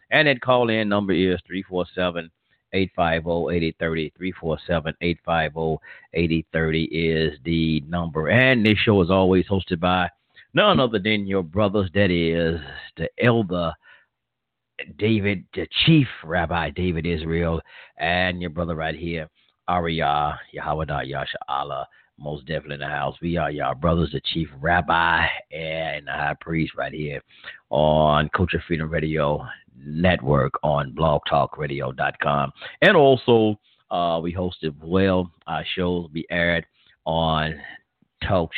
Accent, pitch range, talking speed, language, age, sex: American, 80-95 Hz, 125 wpm, English, 40-59, male